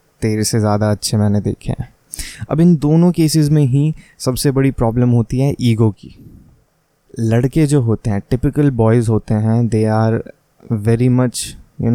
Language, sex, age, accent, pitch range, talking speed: Hindi, male, 20-39, native, 110-130 Hz, 165 wpm